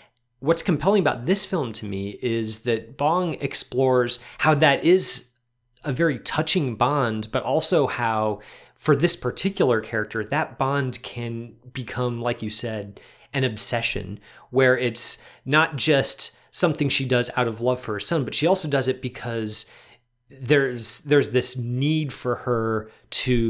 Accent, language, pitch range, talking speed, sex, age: American, English, 115-145 Hz, 155 wpm, male, 30-49